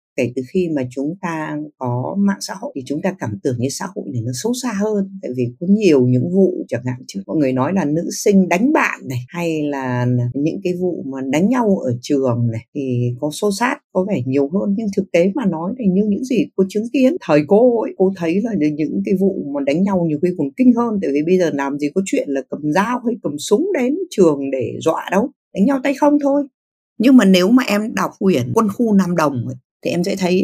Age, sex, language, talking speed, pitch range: 60-79, female, Vietnamese, 255 wpm, 140-210 Hz